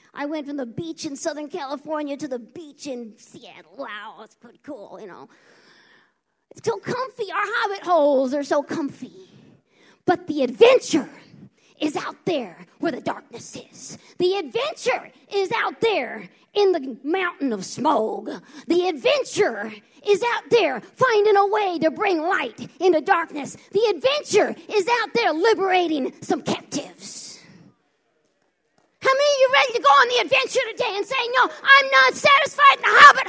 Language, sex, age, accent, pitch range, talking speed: English, female, 40-59, American, 280-410 Hz, 160 wpm